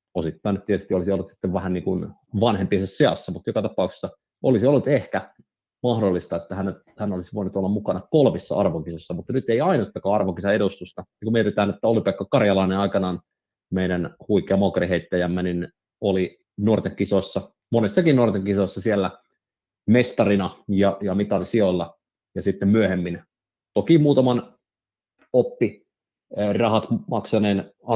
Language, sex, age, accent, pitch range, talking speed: Finnish, male, 30-49, native, 95-110 Hz, 130 wpm